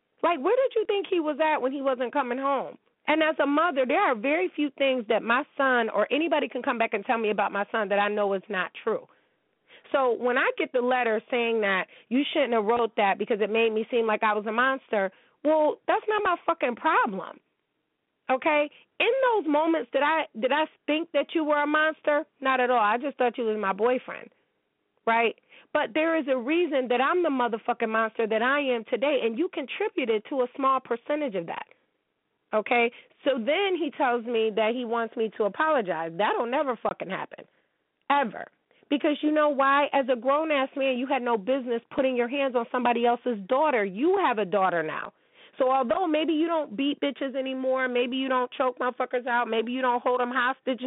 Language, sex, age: English, female, 30-49